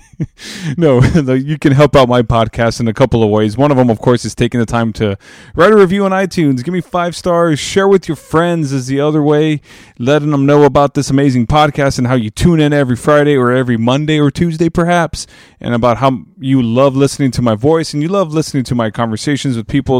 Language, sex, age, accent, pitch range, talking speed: English, male, 20-39, American, 120-160 Hz, 230 wpm